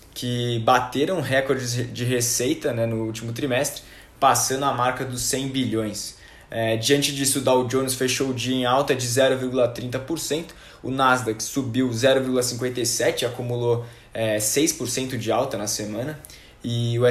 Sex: male